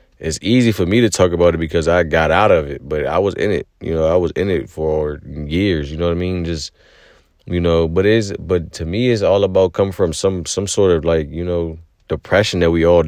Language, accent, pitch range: English, American, 80-95 Hz